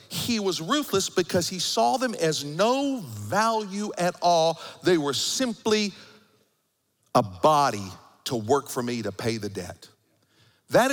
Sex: male